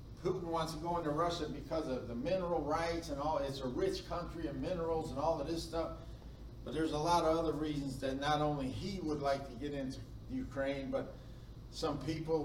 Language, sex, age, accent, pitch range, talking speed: English, male, 50-69, American, 130-160 Hz, 210 wpm